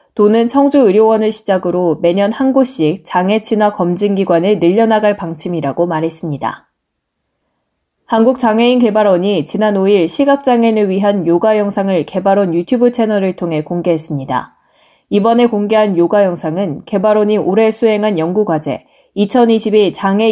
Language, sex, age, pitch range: Korean, female, 20-39, 175-225 Hz